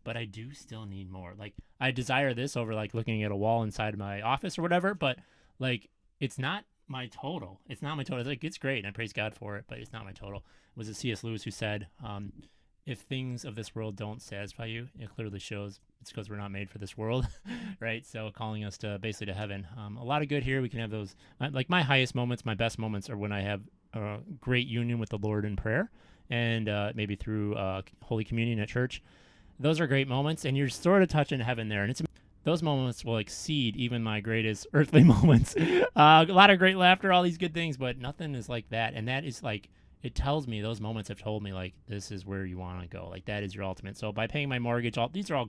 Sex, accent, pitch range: male, American, 105-130 Hz